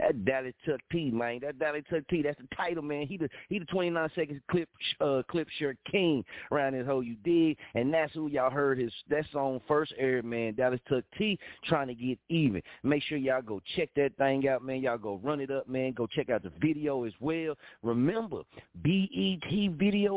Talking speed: 215 wpm